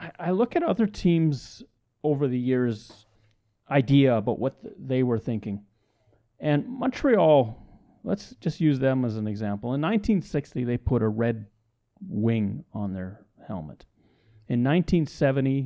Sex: male